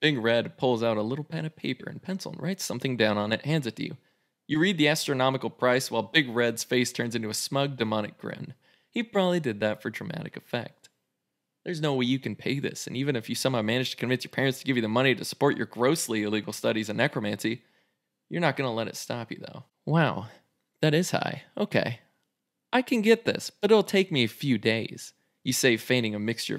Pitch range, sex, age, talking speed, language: 110-160 Hz, male, 20-39, 230 wpm, English